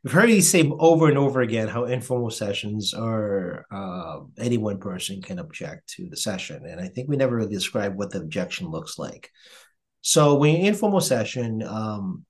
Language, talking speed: English, 190 wpm